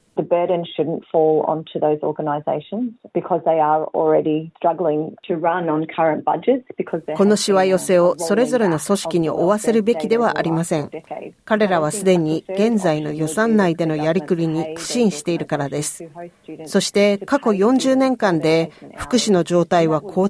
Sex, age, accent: female, 40-59, Australian